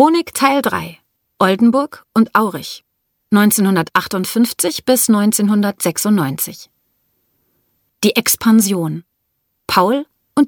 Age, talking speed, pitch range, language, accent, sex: 30-49, 75 wpm, 180-240 Hz, German, German, female